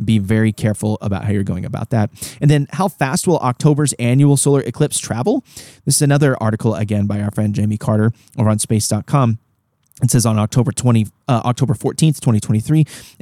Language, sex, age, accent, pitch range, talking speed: English, male, 30-49, American, 110-135 Hz, 190 wpm